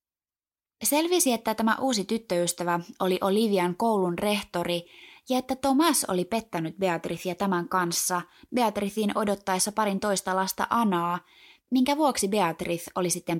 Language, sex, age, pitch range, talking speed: Finnish, female, 20-39, 175-225 Hz, 125 wpm